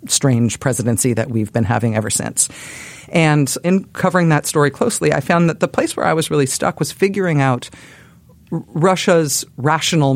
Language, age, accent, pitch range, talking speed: English, 40-59, American, 135-180 Hz, 170 wpm